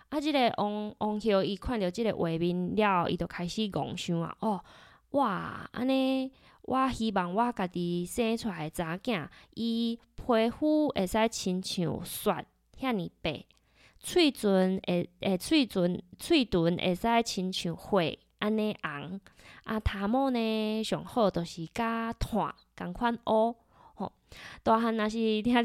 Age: 20-39